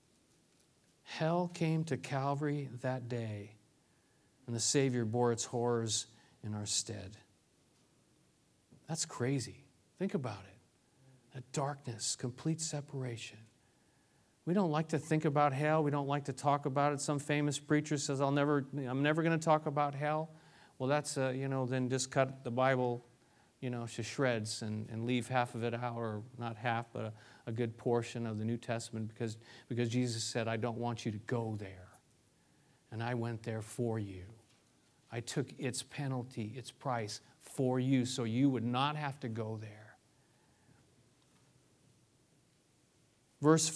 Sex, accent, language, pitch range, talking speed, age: male, American, English, 115-155 Hz, 160 wpm, 40-59